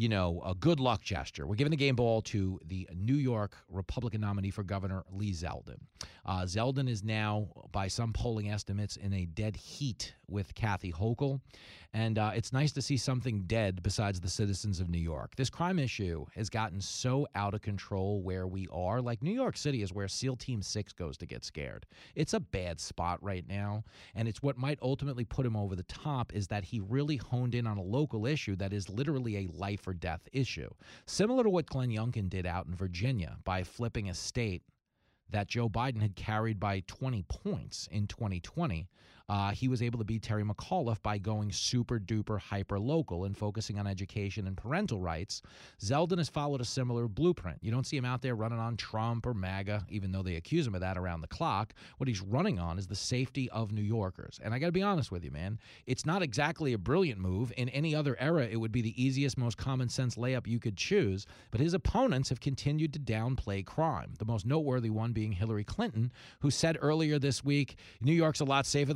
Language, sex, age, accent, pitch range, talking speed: English, male, 30-49, American, 100-130 Hz, 210 wpm